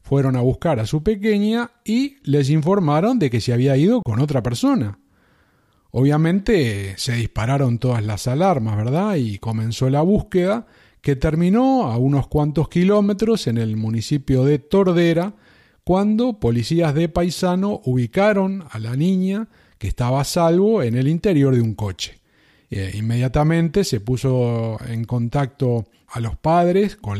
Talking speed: 145 wpm